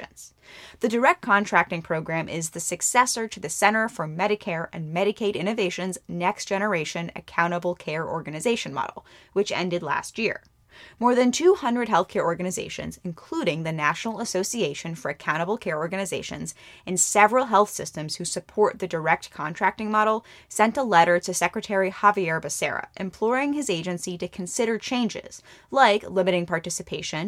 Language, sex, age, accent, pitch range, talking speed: English, female, 10-29, American, 175-220 Hz, 140 wpm